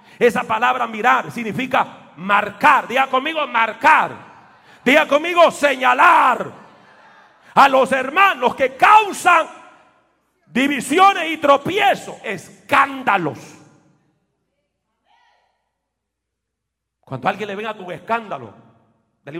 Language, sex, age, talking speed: Spanish, male, 40-59, 85 wpm